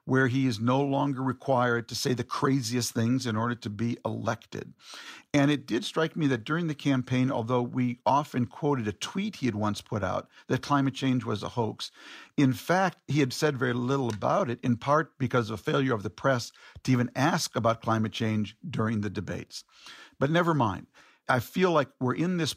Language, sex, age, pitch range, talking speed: English, male, 50-69, 120-145 Hz, 205 wpm